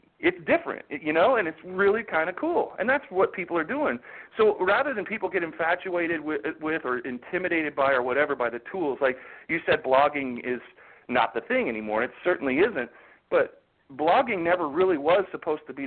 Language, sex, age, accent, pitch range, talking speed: English, male, 40-59, American, 130-185 Hz, 195 wpm